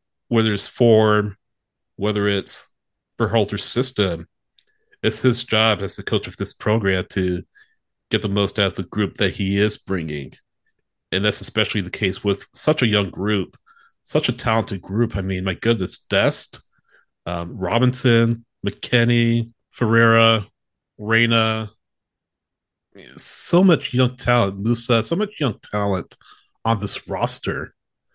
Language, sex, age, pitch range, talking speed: English, male, 30-49, 100-120 Hz, 140 wpm